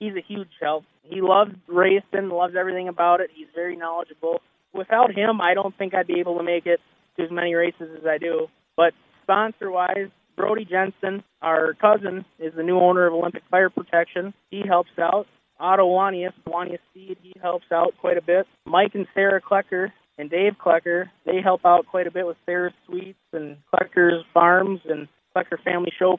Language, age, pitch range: English, 20-39, 175-195 Hz